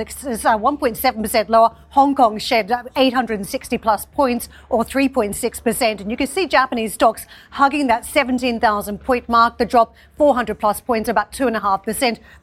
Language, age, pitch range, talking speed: English, 40-59, 225-265 Hz, 130 wpm